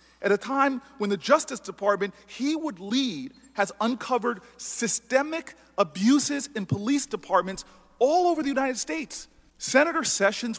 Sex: male